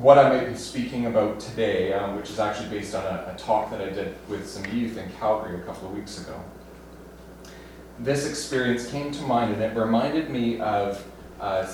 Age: 30-49